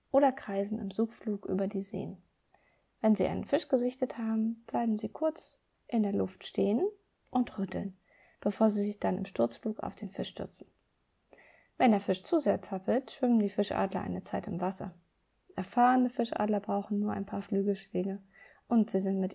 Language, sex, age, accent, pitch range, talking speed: German, female, 20-39, German, 195-265 Hz, 175 wpm